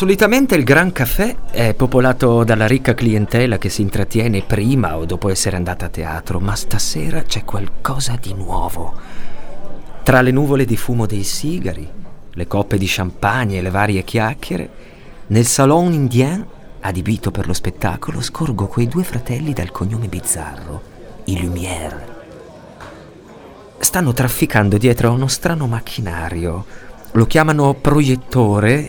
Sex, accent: male, native